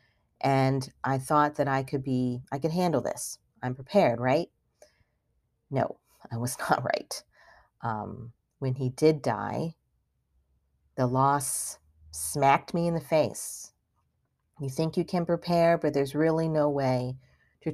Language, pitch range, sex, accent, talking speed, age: English, 120-150 Hz, female, American, 140 wpm, 40-59